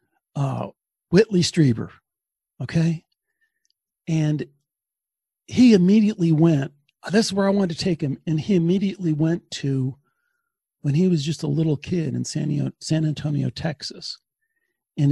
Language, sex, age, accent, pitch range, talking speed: English, male, 50-69, American, 150-190 Hz, 140 wpm